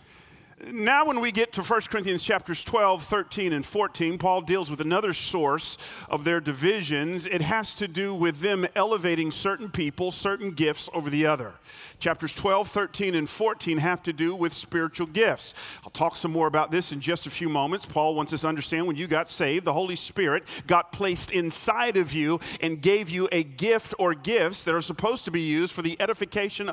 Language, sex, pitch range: English, male, 165-215 Hz